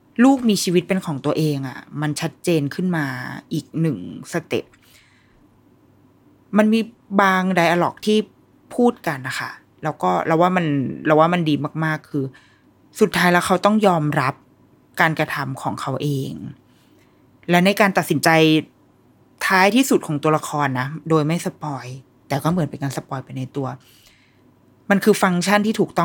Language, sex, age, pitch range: Thai, female, 20-39, 140-185 Hz